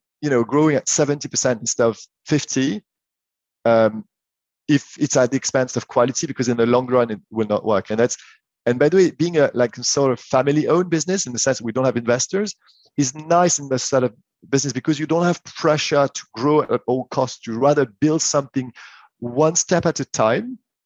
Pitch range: 120-150 Hz